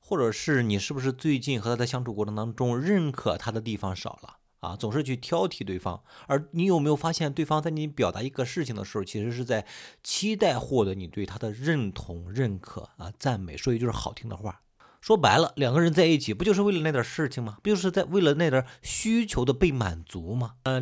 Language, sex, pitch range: Chinese, male, 100-140 Hz